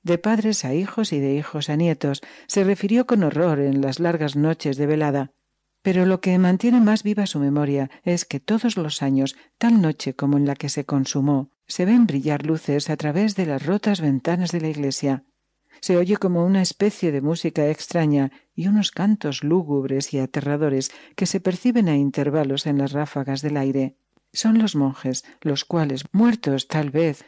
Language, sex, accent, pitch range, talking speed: Spanish, female, Spanish, 140-185 Hz, 185 wpm